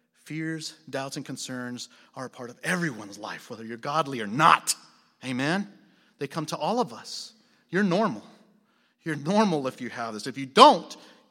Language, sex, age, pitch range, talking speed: English, male, 40-59, 135-180 Hz, 175 wpm